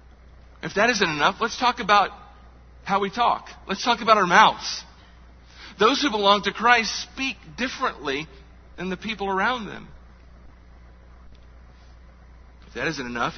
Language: English